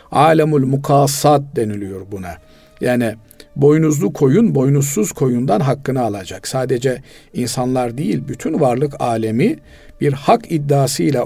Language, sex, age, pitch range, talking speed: Turkish, male, 50-69, 125-160 Hz, 105 wpm